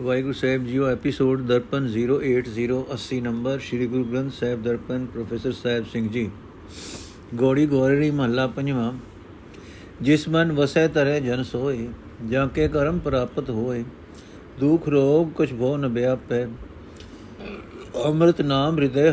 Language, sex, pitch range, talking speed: Punjabi, male, 120-150 Hz, 120 wpm